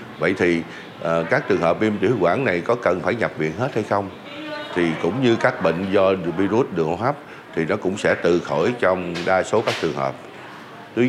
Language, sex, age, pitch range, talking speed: Vietnamese, male, 60-79, 80-115 Hz, 220 wpm